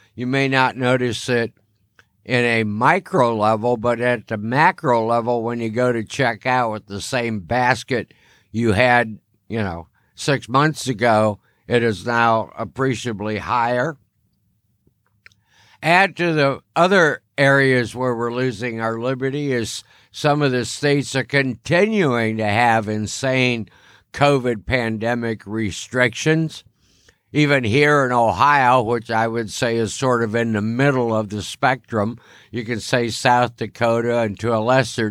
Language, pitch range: English, 110-130 Hz